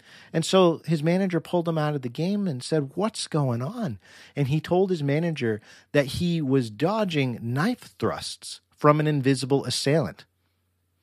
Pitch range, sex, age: 110-145 Hz, male, 40-59